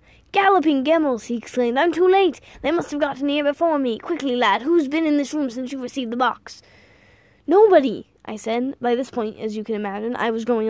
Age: 10-29